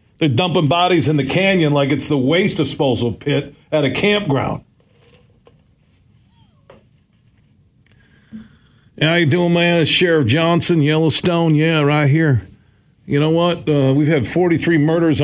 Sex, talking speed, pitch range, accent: male, 140 wpm, 135-175 Hz, American